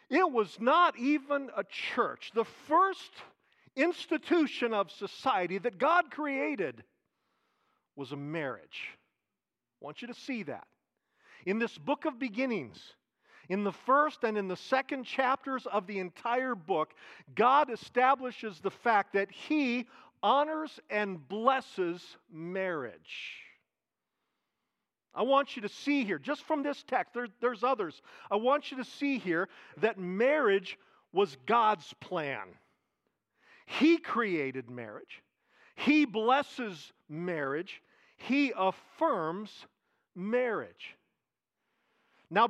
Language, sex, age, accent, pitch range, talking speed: English, male, 50-69, American, 200-280 Hz, 115 wpm